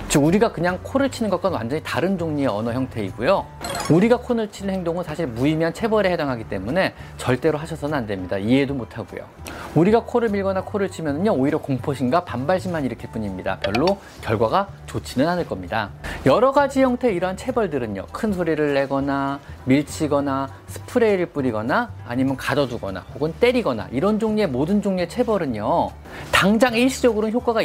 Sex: male